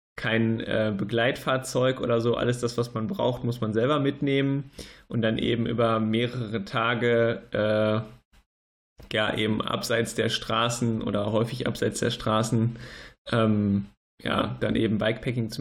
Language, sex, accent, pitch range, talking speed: German, male, German, 110-125 Hz, 140 wpm